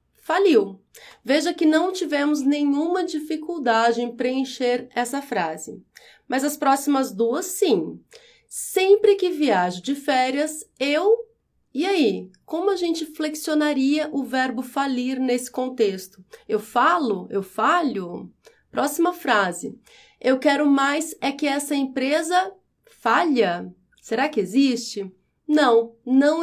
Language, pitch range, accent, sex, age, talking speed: Portuguese, 245-315 Hz, Brazilian, female, 30-49, 120 wpm